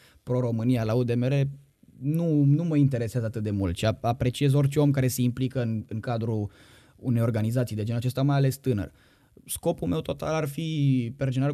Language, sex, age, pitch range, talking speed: Romanian, male, 20-39, 105-135 Hz, 180 wpm